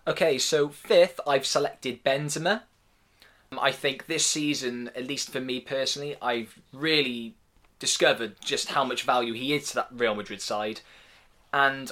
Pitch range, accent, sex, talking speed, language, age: 115-140 Hz, British, male, 155 wpm, English, 20-39